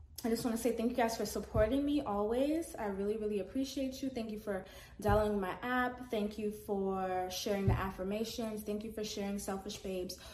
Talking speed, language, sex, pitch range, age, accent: 205 wpm, English, female, 195-240 Hz, 20-39, American